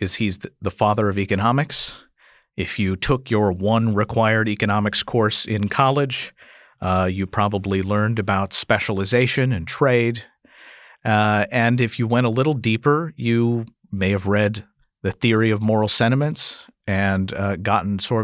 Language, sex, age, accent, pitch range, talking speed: English, male, 50-69, American, 95-115 Hz, 150 wpm